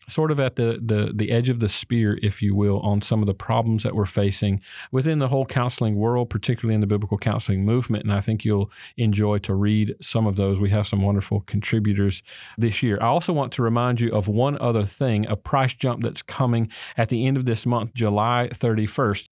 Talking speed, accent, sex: 225 wpm, American, male